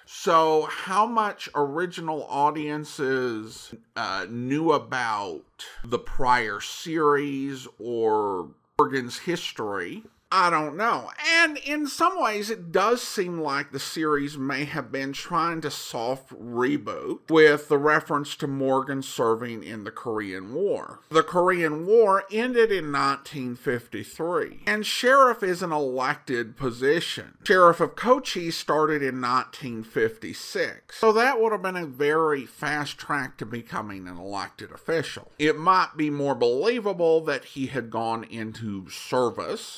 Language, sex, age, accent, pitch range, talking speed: English, male, 50-69, American, 130-190 Hz, 135 wpm